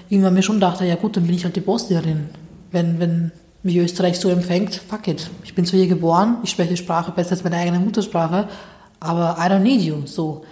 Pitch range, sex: 170-200 Hz, female